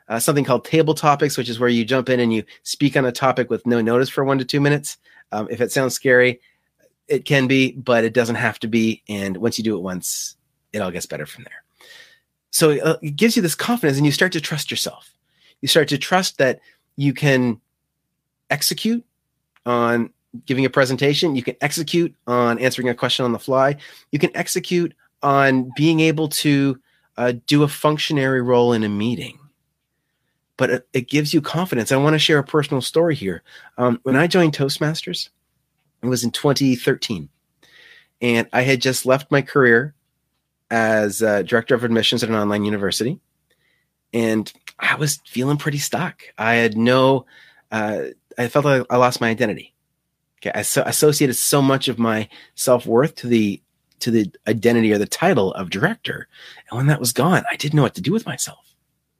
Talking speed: 185 wpm